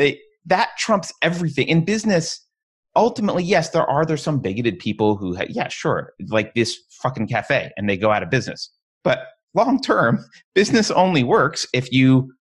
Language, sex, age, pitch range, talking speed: English, male, 30-49, 110-175 Hz, 170 wpm